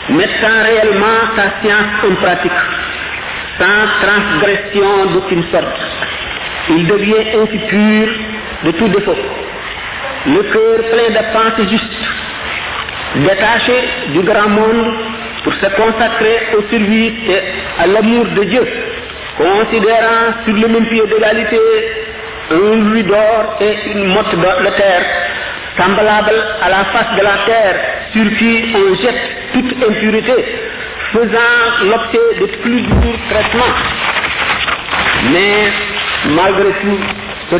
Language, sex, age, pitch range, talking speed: French, male, 50-69, 205-240 Hz, 125 wpm